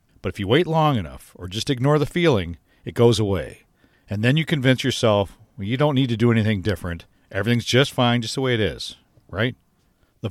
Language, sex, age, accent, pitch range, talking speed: English, male, 50-69, American, 100-140 Hz, 210 wpm